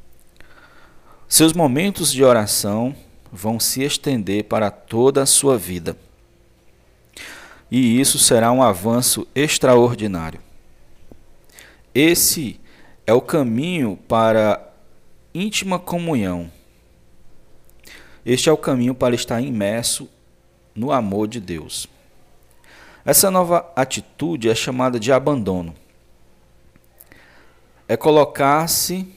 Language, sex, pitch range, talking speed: Portuguese, male, 105-140 Hz, 95 wpm